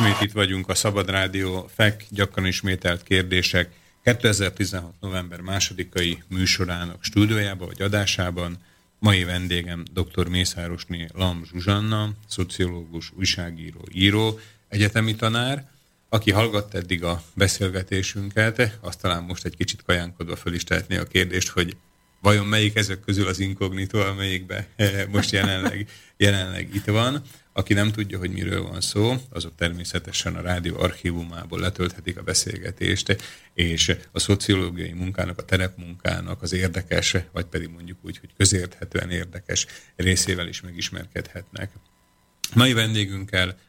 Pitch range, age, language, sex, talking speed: 90-100 Hz, 30-49, Slovak, male, 125 wpm